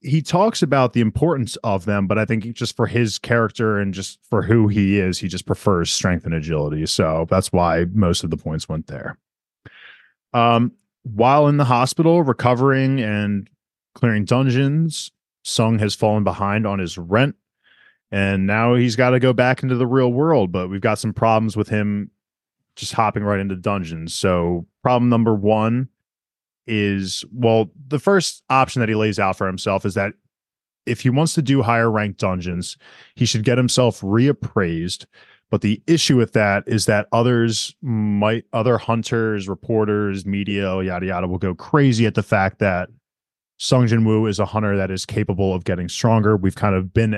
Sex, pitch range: male, 95-120 Hz